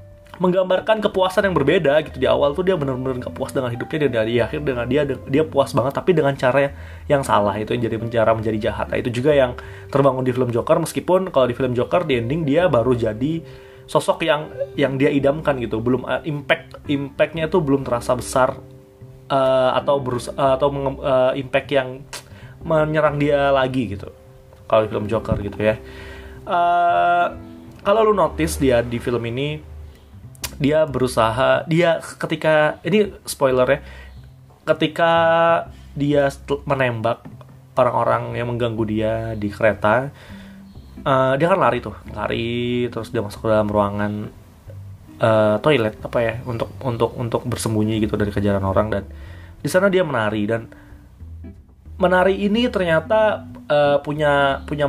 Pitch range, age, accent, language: 110-145 Hz, 20-39, native, Indonesian